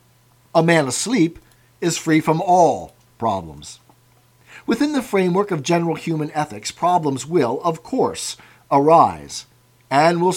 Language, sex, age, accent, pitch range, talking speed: English, male, 50-69, American, 125-175 Hz, 125 wpm